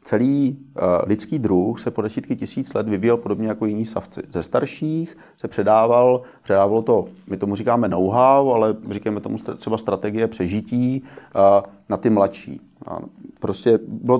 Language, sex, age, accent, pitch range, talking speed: Czech, male, 30-49, native, 100-115 Hz, 140 wpm